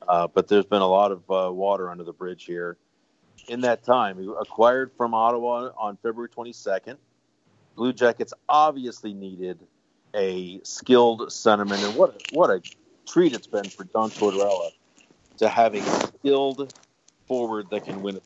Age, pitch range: 50-69, 100-120 Hz